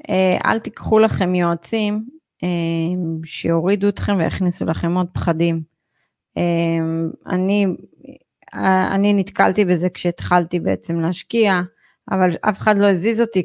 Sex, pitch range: female, 175-195 Hz